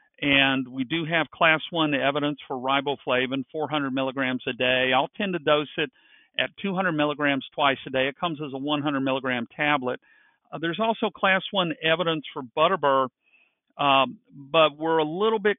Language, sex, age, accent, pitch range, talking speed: English, male, 50-69, American, 140-170 Hz, 170 wpm